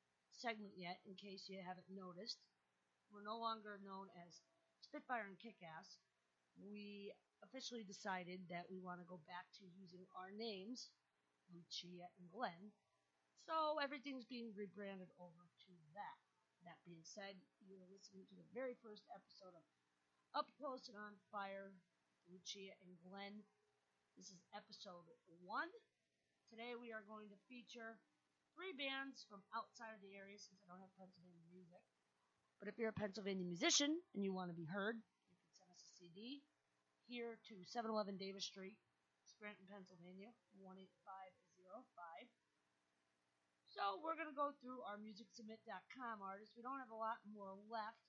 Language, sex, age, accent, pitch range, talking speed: English, female, 40-59, American, 180-225 Hz, 150 wpm